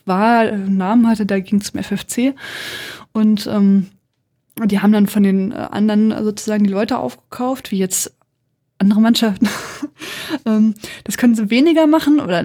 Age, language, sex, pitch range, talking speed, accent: 20-39, German, female, 190-220 Hz, 160 wpm, German